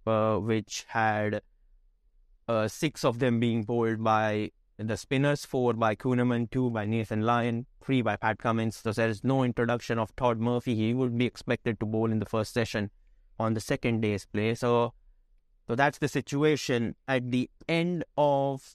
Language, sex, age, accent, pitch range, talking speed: English, male, 20-39, Indian, 110-130 Hz, 175 wpm